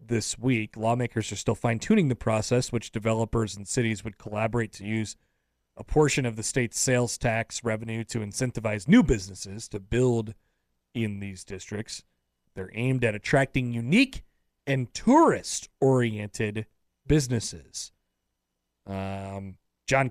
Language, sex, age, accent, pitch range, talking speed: English, male, 30-49, American, 110-140 Hz, 130 wpm